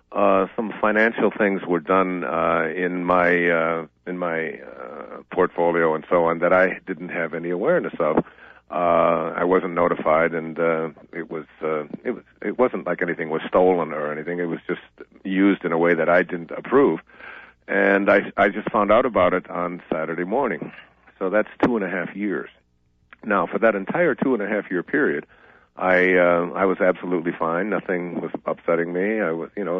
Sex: male